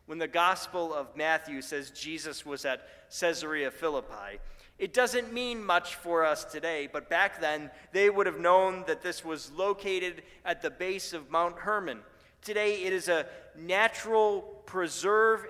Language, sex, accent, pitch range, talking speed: English, male, American, 160-210 Hz, 160 wpm